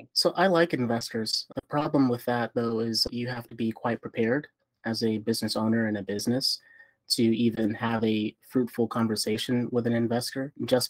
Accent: American